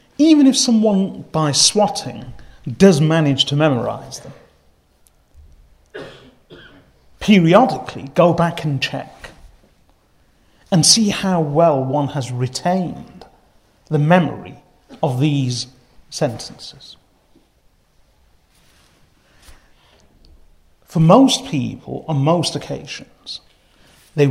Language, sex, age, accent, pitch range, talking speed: English, male, 40-59, British, 120-160 Hz, 85 wpm